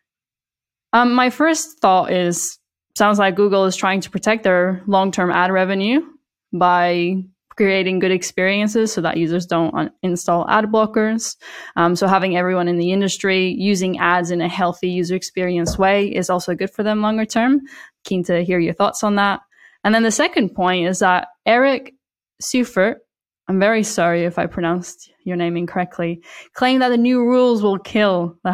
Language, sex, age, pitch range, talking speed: English, female, 10-29, 175-215 Hz, 170 wpm